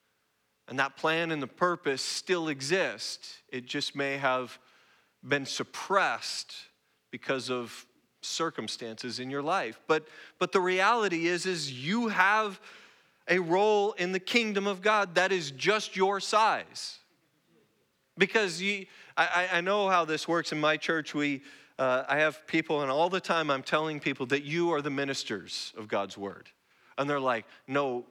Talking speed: 160 wpm